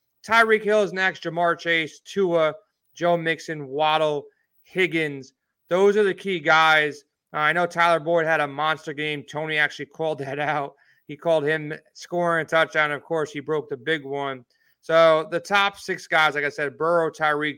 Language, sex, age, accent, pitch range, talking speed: English, male, 30-49, American, 150-175 Hz, 180 wpm